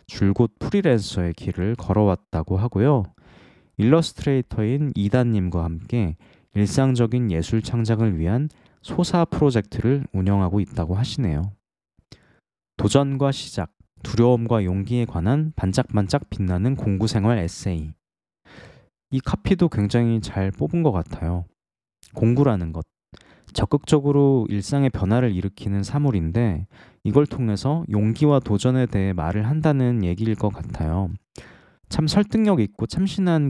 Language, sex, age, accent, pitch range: Korean, male, 20-39, native, 95-135 Hz